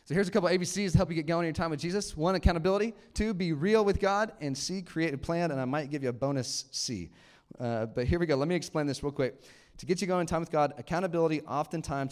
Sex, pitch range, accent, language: male, 125-165 Hz, American, English